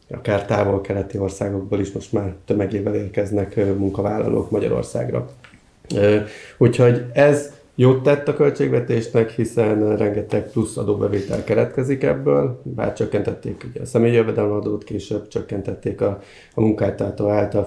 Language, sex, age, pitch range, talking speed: Hungarian, male, 30-49, 100-115 Hz, 120 wpm